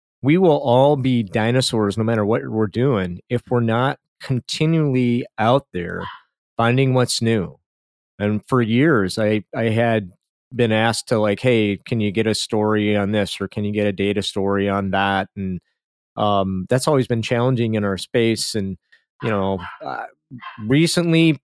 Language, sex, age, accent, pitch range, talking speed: English, male, 40-59, American, 100-130 Hz, 170 wpm